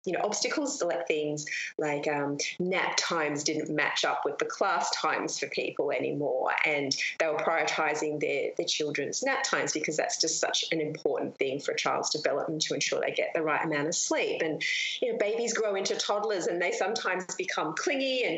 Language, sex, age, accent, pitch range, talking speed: English, female, 30-49, Australian, 155-220 Hz, 200 wpm